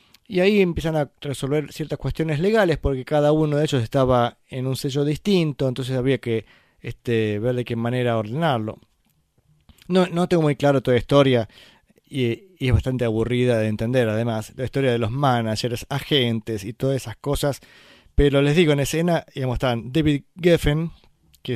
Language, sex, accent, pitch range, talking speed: Spanish, male, Argentinian, 120-150 Hz, 175 wpm